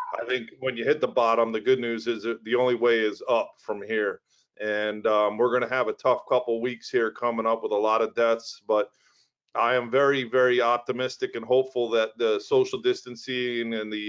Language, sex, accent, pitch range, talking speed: English, male, American, 115-130 Hz, 215 wpm